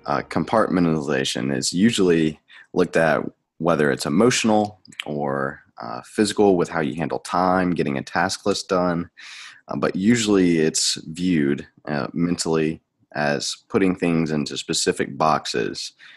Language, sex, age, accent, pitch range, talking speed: English, male, 20-39, American, 70-85 Hz, 130 wpm